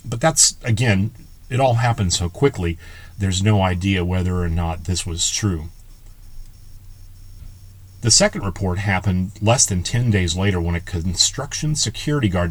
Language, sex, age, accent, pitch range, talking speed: English, male, 40-59, American, 95-125 Hz, 150 wpm